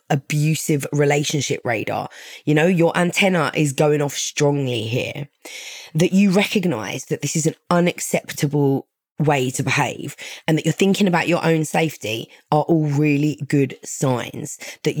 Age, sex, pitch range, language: 20-39, female, 130-165 Hz, English